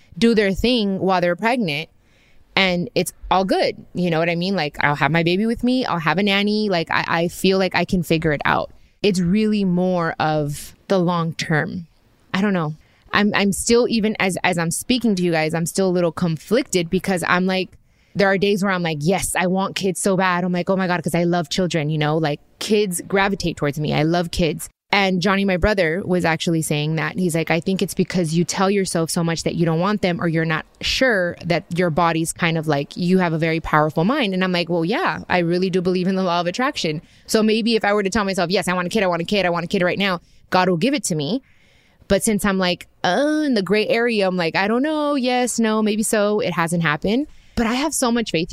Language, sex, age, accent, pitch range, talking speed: English, female, 20-39, American, 170-205 Hz, 255 wpm